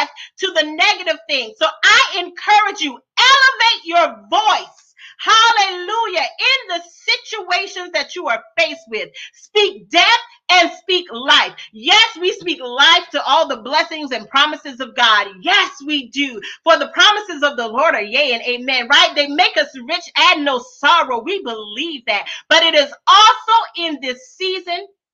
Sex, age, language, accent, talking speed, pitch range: female, 40-59, English, American, 160 wpm, 285-385 Hz